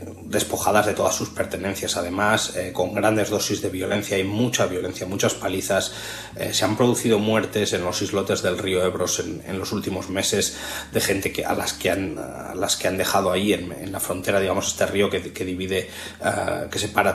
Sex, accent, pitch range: male, Spanish, 95-125 Hz